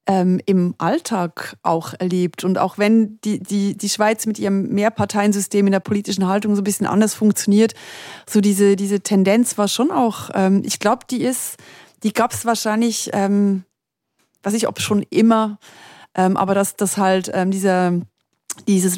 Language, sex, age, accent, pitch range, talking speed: German, female, 30-49, German, 180-210 Hz, 170 wpm